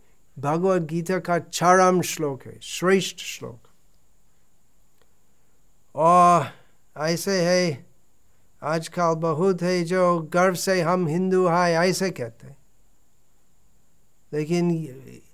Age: 50-69